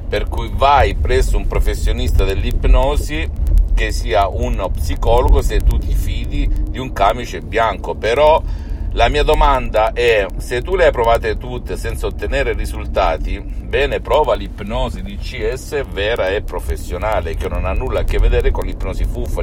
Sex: male